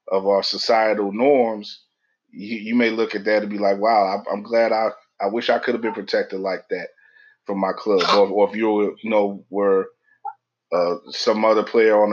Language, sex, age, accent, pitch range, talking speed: English, male, 30-49, American, 105-120 Hz, 205 wpm